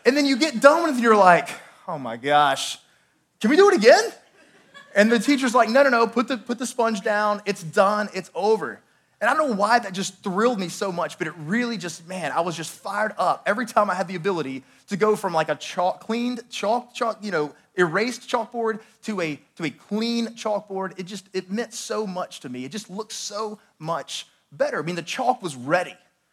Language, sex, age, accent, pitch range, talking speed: English, male, 20-39, American, 170-230 Hz, 230 wpm